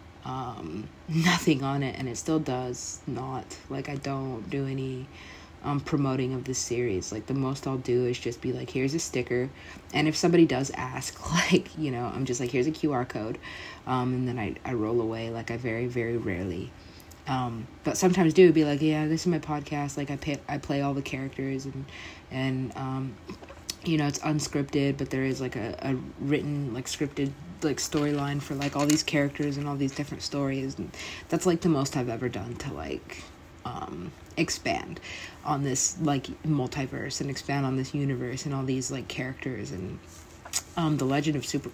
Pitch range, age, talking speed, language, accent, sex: 125-145 Hz, 20-39, 195 wpm, English, American, female